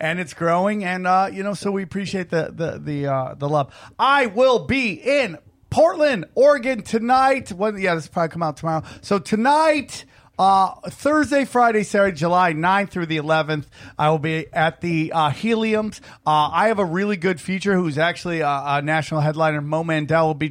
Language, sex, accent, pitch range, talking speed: English, male, American, 155-195 Hz, 195 wpm